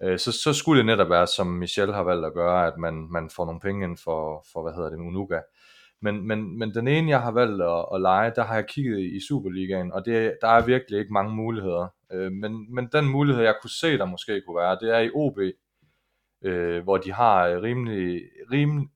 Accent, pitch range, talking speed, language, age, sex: native, 90-115 Hz, 225 wpm, Danish, 30-49, male